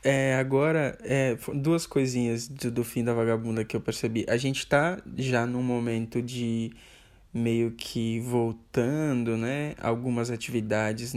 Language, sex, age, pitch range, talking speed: Portuguese, male, 10-29, 115-130 Hz, 140 wpm